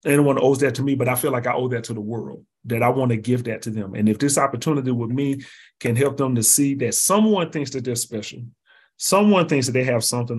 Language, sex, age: English, male, 30-49